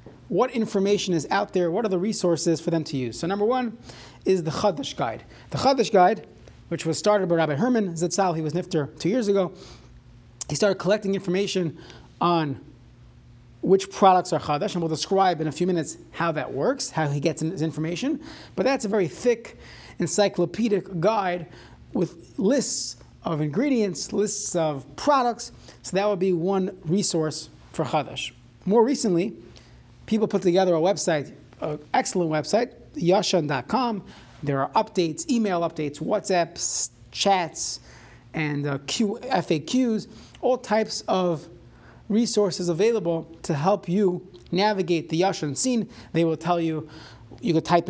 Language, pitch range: English, 155-200 Hz